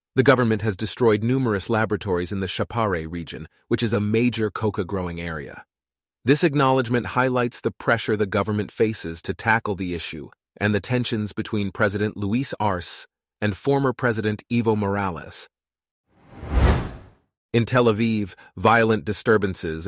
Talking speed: 135 wpm